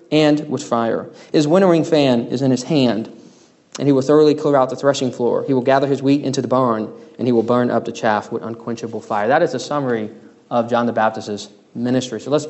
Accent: American